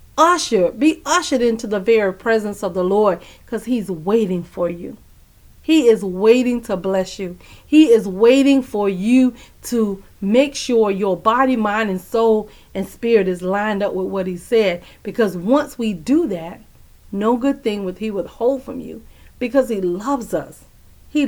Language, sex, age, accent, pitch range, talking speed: English, female, 40-59, American, 180-235 Hz, 170 wpm